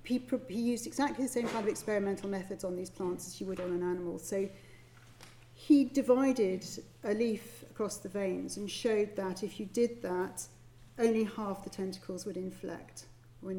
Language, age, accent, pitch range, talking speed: English, 40-59, British, 165-225 Hz, 175 wpm